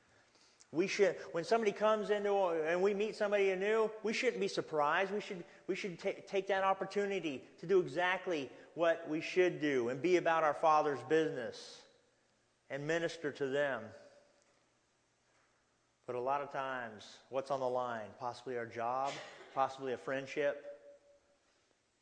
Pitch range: 135-185 Hz